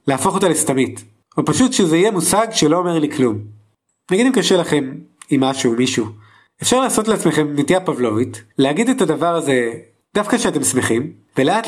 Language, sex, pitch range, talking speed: Hebrew, male, 125-185 Hz, 170 wpm